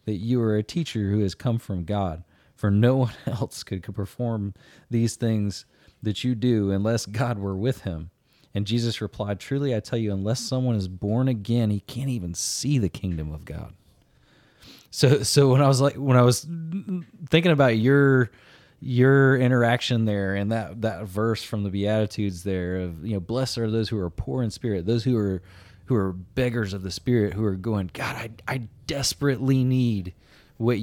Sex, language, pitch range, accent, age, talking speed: male, English, 100-130 Hz, American, 30-49, 195 wpm